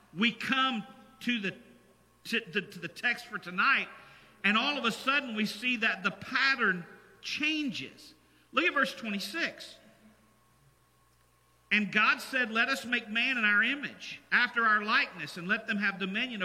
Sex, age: male, 50-69